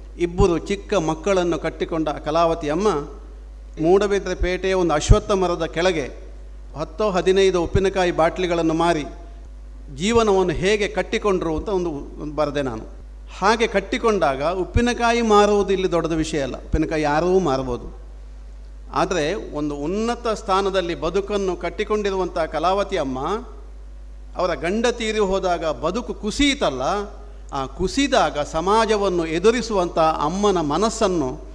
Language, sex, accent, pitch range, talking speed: Kannada, male, native, 155-205 Hz, 95 wpm